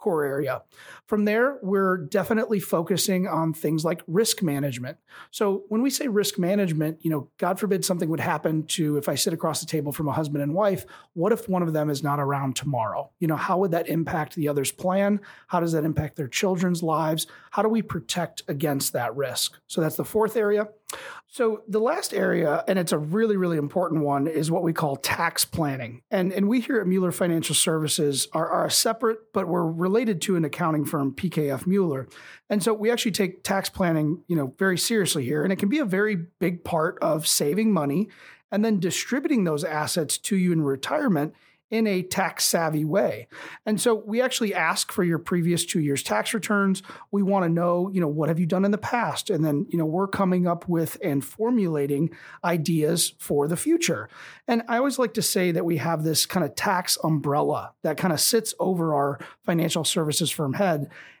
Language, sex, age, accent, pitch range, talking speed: English, male, 30-49, American, 155-200 Hz, 205 wpm